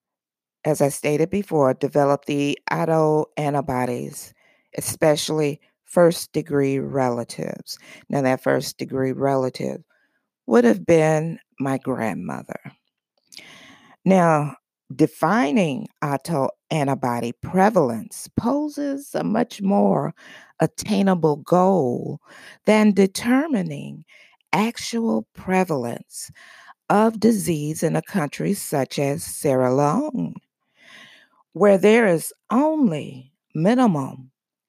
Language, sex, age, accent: English, female, 50-69, American